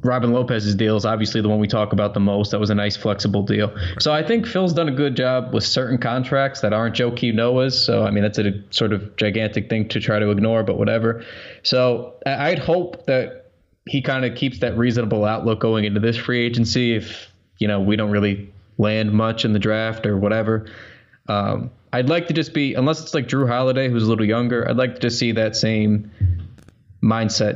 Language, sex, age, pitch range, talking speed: English, male, 20-39, 105-125 Hz, 220 wpm